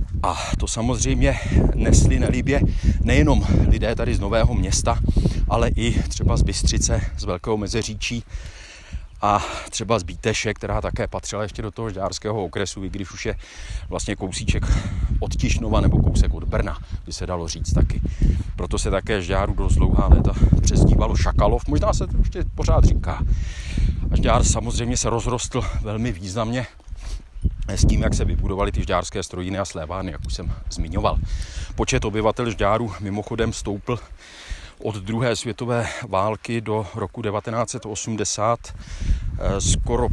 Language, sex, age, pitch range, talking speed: Czech, male, 40-59, 90-115 Hz, 145 wpm